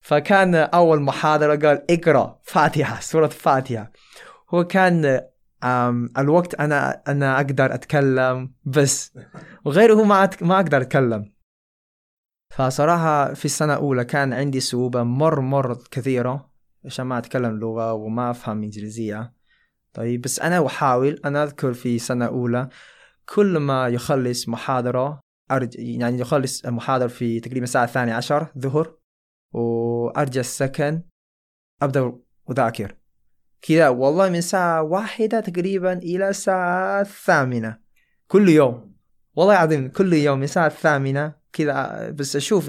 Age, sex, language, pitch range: 20-39, male, Arabic, 120-155 Hz